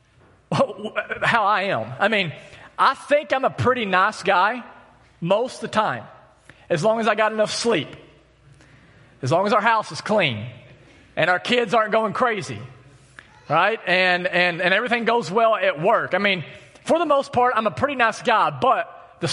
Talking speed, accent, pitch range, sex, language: 180 wpm, American, 135-215 Hz, male, English